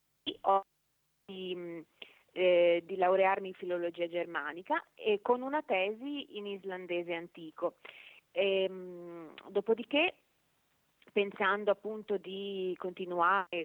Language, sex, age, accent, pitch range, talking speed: Italian, female, 30-49, native, 175-220 Hz, 80 wpm